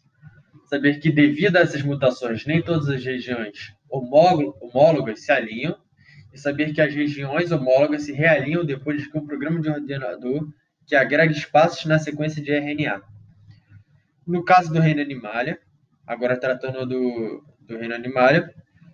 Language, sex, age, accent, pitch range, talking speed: Portuguese, male, 10-29, Brazilian, 130-155 Hz, 145 wpm